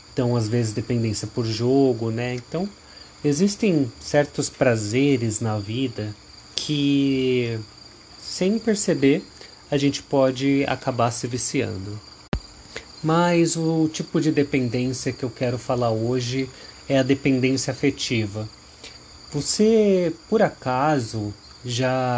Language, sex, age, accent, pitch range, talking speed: Portuguese, male, 30-49, Brazilian, 125-155 Hz, 110 wpm